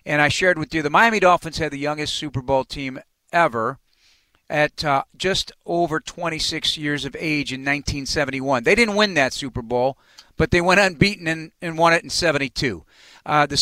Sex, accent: male, American